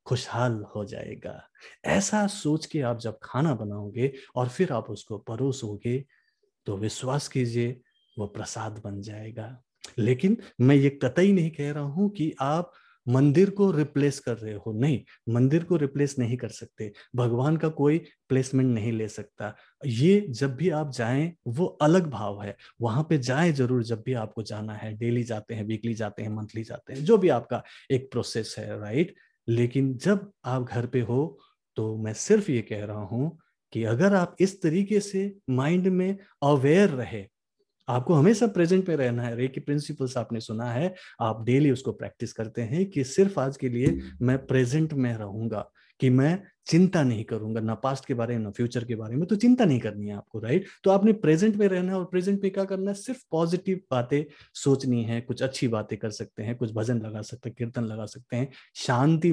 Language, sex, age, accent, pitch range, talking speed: Hindi, male, 30-49, native, 115-160 Hz, 190 wpm